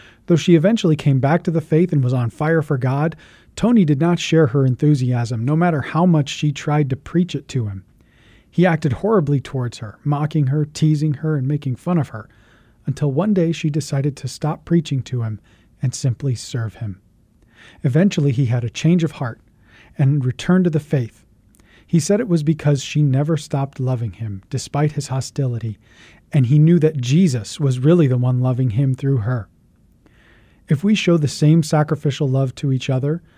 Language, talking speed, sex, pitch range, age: English, 190 wpm, male, 120-155 Hz, 40-59